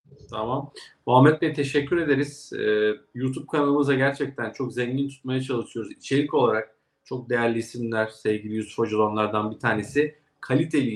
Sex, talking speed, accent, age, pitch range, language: male, 130 wpm, native, 40-59, 120-150 Hz, Turkish